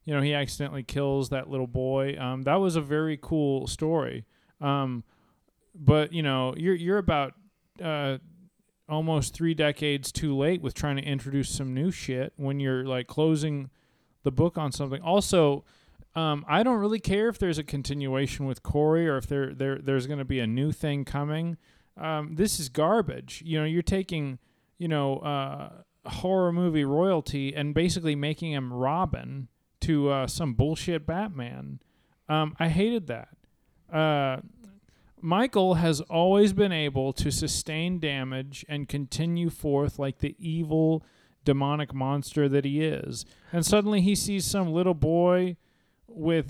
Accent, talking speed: American, 160 wpm